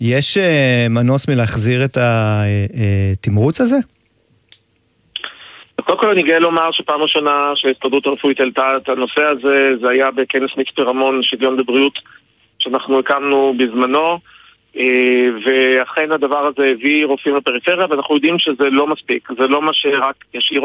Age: 40-59